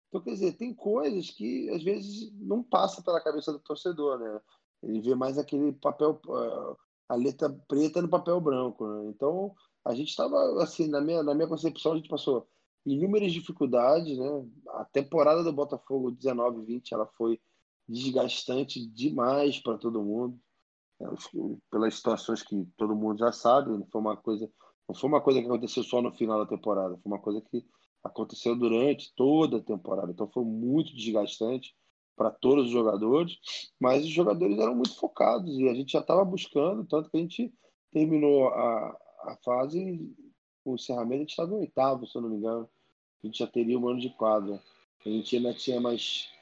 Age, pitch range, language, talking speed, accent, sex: 20-39, 115-155 Hz, Portuguese, 180 wpm, Brazilian, male